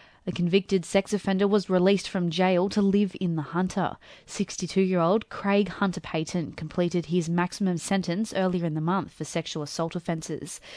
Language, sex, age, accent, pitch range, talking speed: English, female, 20-39, Australian, 170-200 Hz, 160 wpm